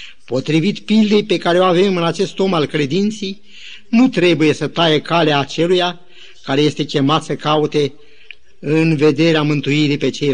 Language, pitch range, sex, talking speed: Romanian, 150-195 Hz, male, 155 wpm